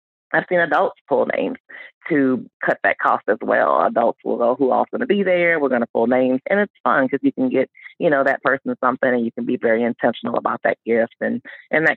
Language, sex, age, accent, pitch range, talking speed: English, female, 30-49, American, 125-170 Hz, 245 wpm